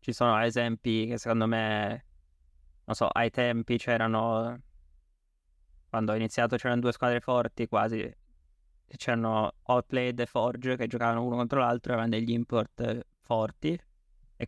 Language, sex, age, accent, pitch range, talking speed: Italian, male, 20-39, native, 105-120 Hz, 140 wpm